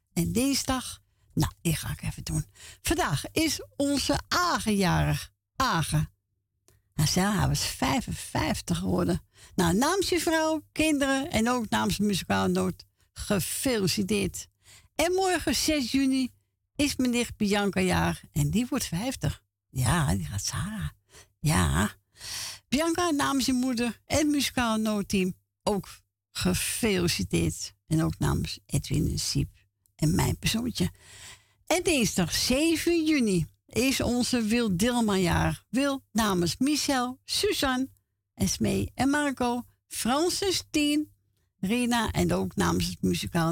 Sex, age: female, 60-79